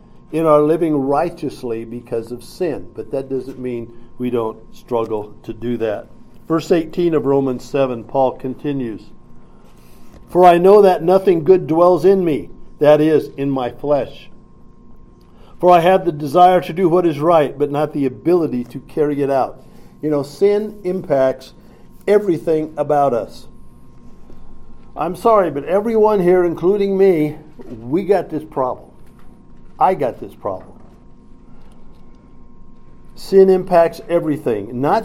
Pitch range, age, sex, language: 135-180 Hz, 50-69, male, English